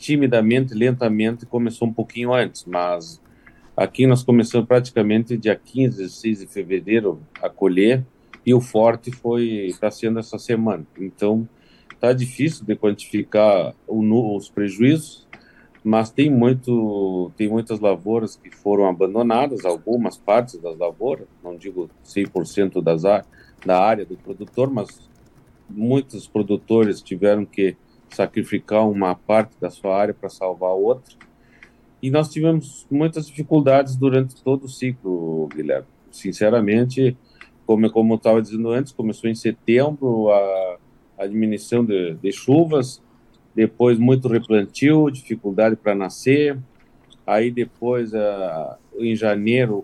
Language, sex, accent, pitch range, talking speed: Portuguese, male, Brazilian, 105-125 Hz, 130 wpm